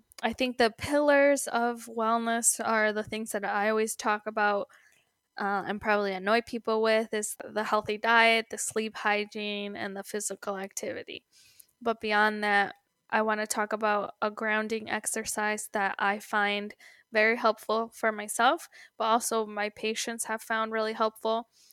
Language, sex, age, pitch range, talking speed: English, female, 10-29, 205-225 Hz, 155 wpm